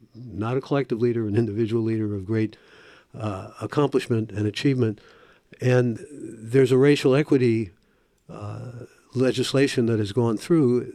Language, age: English, 60-79